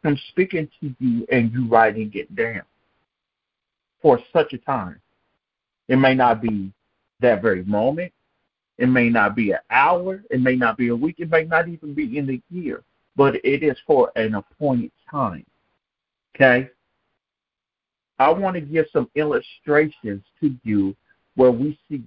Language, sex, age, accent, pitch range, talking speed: English, male, 50-69, American, 115-150 Hz, 160 wpm